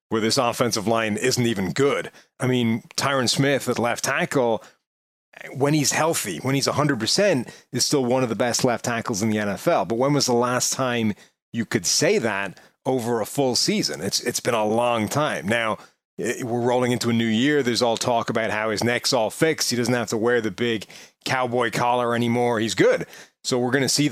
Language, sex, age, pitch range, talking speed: English, male, 30-49, 115-135 Hz, 210 wpm